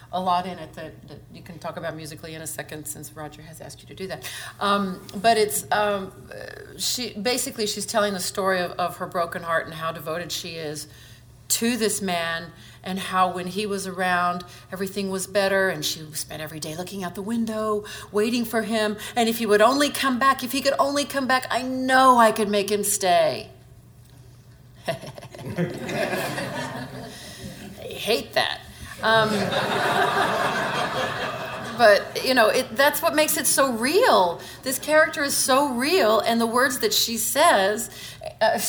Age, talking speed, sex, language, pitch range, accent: 40-59, 175 wpm, female, English, 175-245 Hz, American